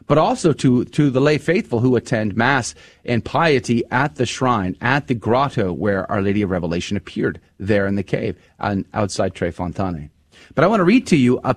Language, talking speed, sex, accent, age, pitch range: English, 200 wpm, male, American, 30-49, 105-170 Hz